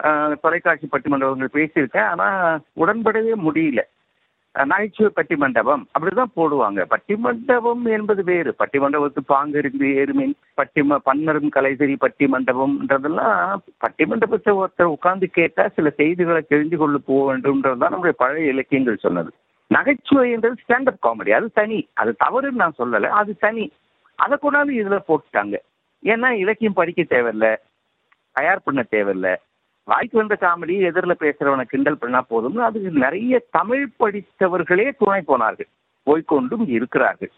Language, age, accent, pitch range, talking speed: Tamil, 50-69, native, 145-215 Hz, 130 wpm